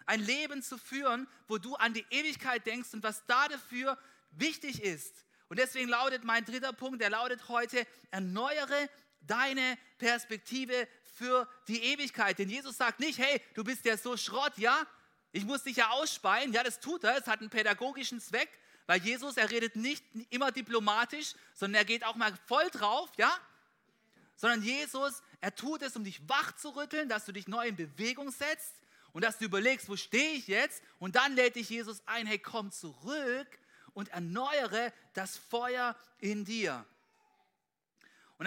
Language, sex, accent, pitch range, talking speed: German, male, German, 220-270 Hz, 175 wpm